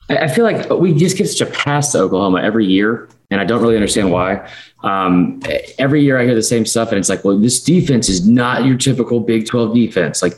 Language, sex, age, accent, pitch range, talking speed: English, male, 30-49, American, 110-145 Hz, 235 wpm